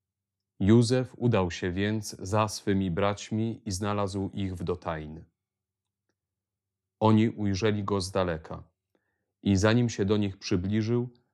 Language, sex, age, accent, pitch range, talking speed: Polish, male, 30-49, native, 95-110 Hz, 120 wpm